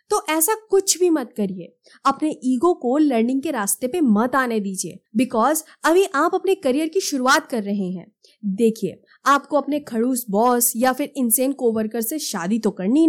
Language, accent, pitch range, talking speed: Hindi, native, 225-340 Hz, 180 wpm